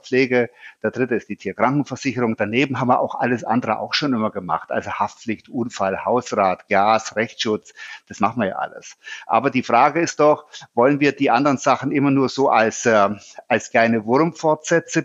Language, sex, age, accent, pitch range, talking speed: German, male, 50-69, German, 120-155 Hz, 175 wpm